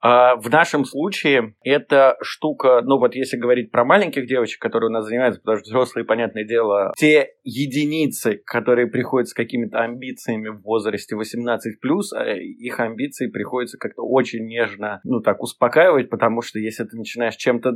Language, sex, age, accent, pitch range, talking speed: Russian, male, 20-39, native, 110-130 Hz, 155 wpm